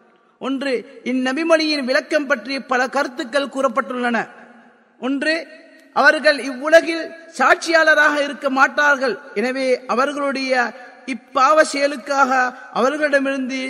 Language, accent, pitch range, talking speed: Tamil, native, 250-300 Hz, 80 wpm